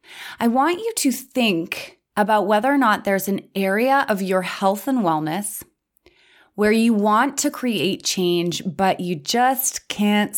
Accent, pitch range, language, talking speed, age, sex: American, 180-235 Hz, English, 155 wpm, 20-39, female